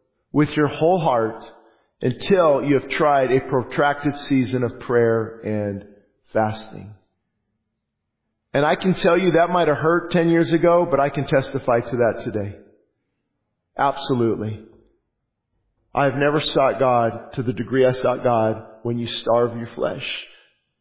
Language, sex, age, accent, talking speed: English, male, 50-69, American, 145 wpm